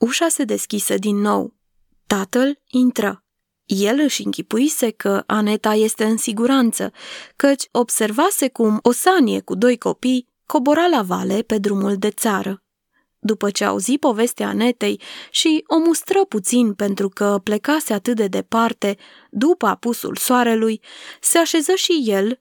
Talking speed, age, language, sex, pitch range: 135 wpm, 20-39, Romanian, female, 205-270 Hz